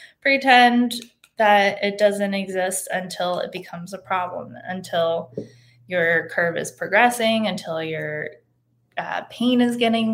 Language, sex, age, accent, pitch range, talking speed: English, female, 20-39, American, 175-200 Hz, 125 wpm